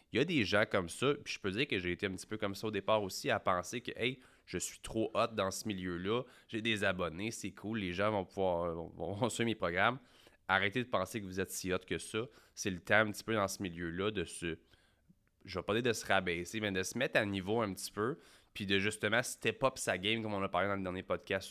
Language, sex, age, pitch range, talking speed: French, male, 20-39, 95-115 Hz, 275 wpm